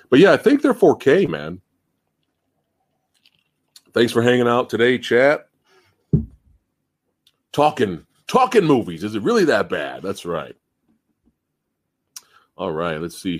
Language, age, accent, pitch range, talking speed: English, 40-59, American, 90-120 Hz, 120 wpm